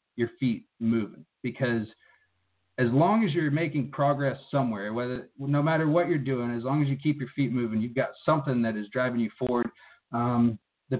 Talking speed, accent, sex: 190 wpm, American, male